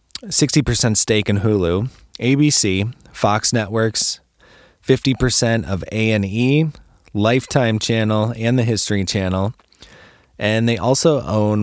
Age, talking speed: 20-39, 115 wpm